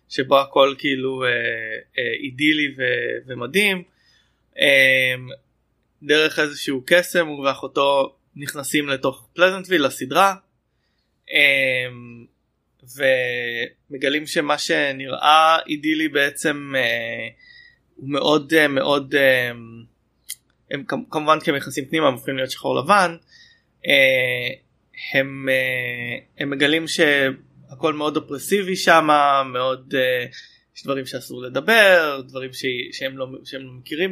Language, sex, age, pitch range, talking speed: Hebrew, male, 20-39, 130-155 Hz, 105 wpm